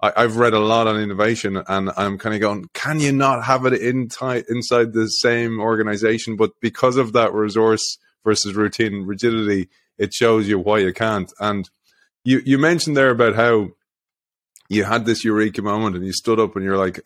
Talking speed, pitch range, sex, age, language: 195 wpm, 100-120 Hz, male, 20-39, English